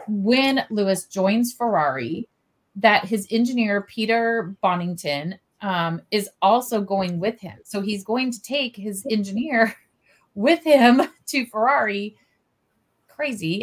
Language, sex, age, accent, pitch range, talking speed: English, female, 30-49, American, 180-230 Hz, 120 wpm